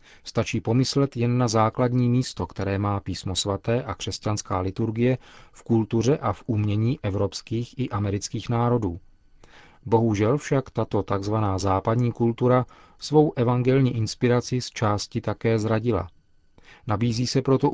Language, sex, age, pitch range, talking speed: Czech, male, 40-59, 100-120 Hz, 130 wpm